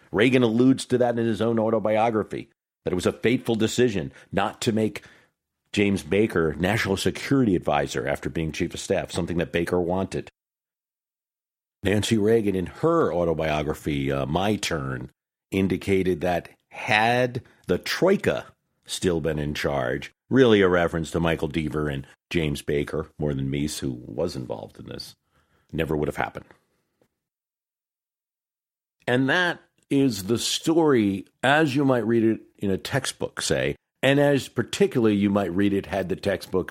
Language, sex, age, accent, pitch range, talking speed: English, male, 50-69, American, 80-115 Hz, 150 wpm